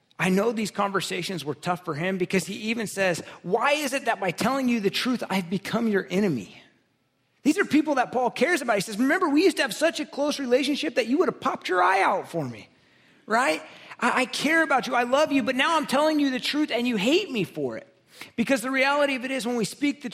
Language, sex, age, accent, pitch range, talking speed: English, male, 30-49, American, 180-250 Hz, 255 wpm